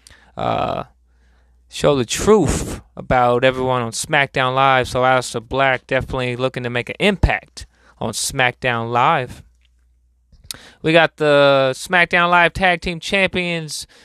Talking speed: 125 wpm